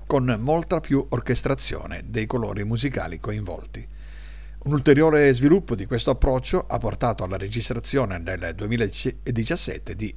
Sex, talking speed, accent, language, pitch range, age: male, 125 wpm, native, Italian, 95-130 Hz, 50-69